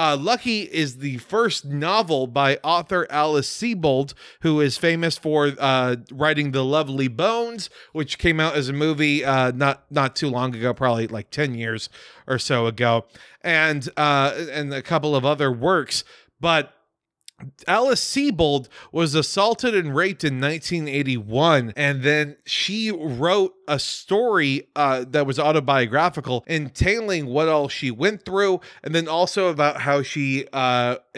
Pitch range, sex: 135-185 Hz, male